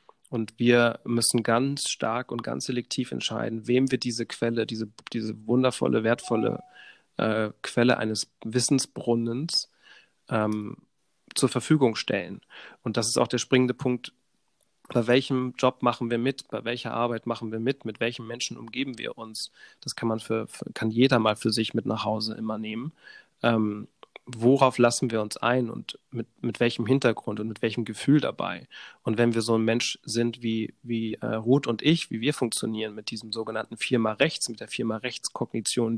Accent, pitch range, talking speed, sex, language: German, 110-130 Hz, 175 wpm, male, German